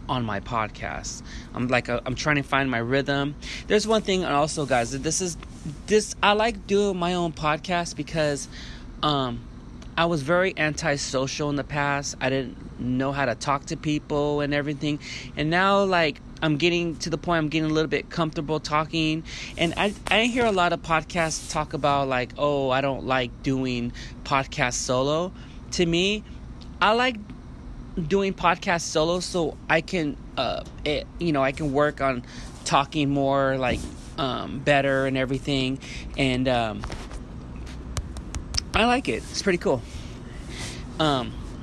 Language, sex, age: English, male, 20-39